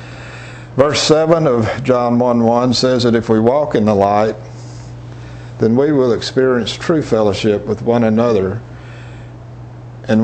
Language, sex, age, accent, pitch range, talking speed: English, male, 60-79, American, 110-125 Hz, 140 wpm